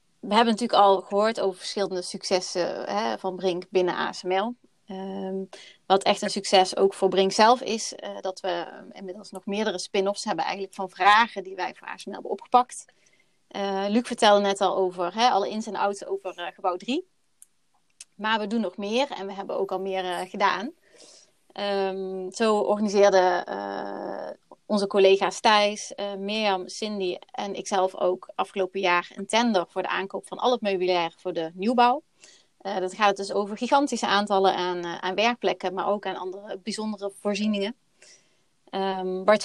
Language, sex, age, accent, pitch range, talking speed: Dutch, female, 30-49, Dutch, 190-215 Hz, 175 wpm